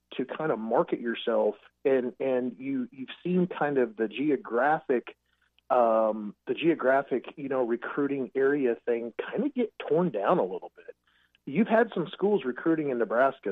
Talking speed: 165 wpm